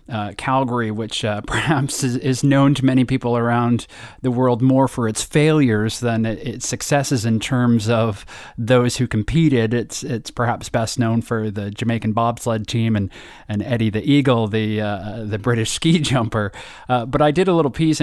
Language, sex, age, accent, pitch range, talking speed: English, male, 30-49, American, 115-135 Hz, 185 wpm